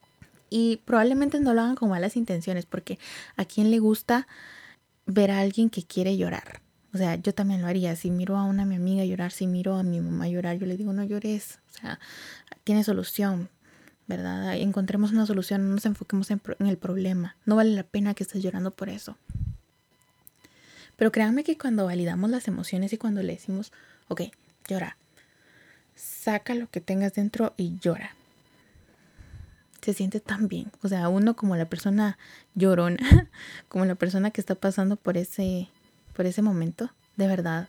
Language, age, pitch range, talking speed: Spanish, 20-39, 185-215 Hz, 180 wpm